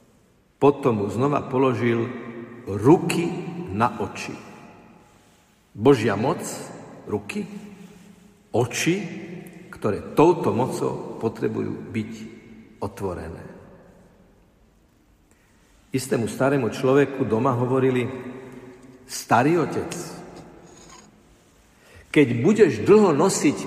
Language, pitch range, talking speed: Slovak, 115-155 Hz, 70 wpm